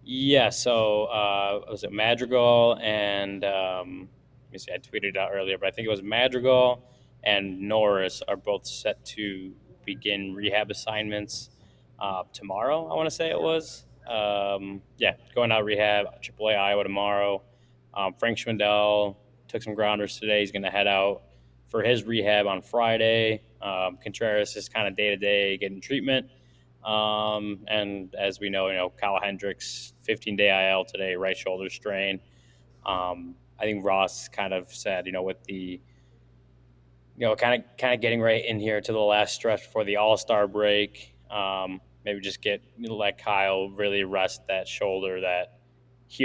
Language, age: English, 20-39